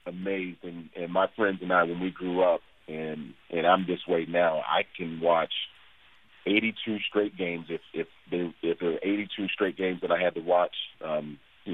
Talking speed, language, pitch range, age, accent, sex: 200 wpm, English, 80-95 Hz, 40-59, American, male